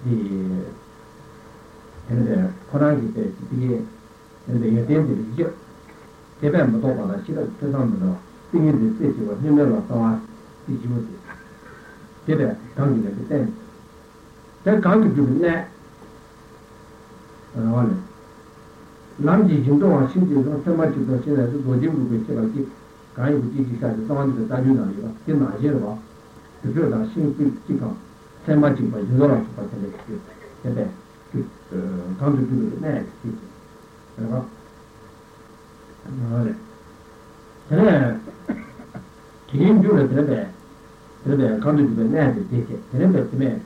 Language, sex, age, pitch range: Italian, male, 60-79, 110-155 Hz